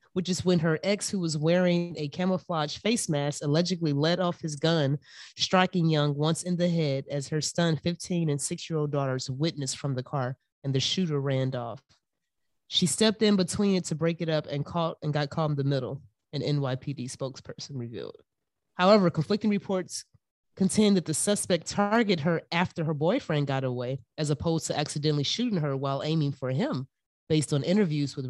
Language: English